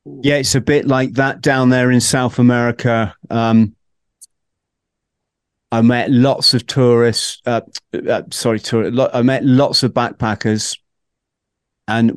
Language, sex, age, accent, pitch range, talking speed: English, male, 40-59, British, 115-135 Hz, 130 wpm